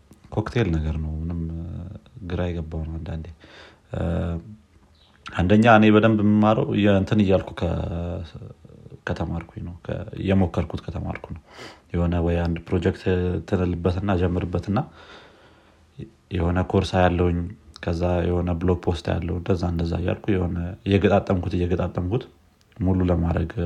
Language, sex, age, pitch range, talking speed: Amharic, male, 30-49, 85-100 Hz, 105 wpm